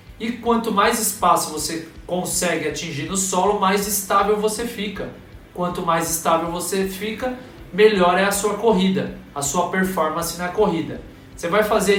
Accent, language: Brazilian, Portuguese